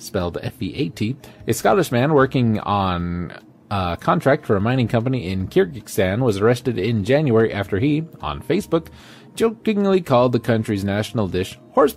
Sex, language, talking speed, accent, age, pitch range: male, English, 155 wpm, American, 30-49, 95-145 Hz